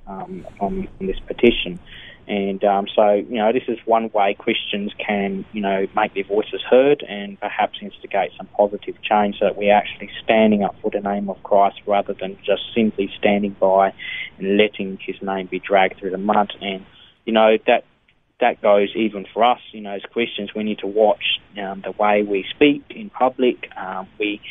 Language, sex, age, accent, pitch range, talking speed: English, male, 20-39, Australian, 100-115 Hz, 190 wpm